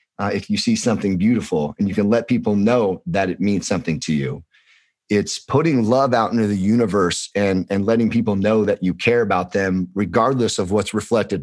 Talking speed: 205 wpm